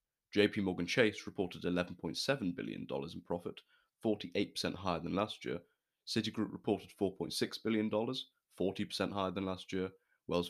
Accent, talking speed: British, 125 wpm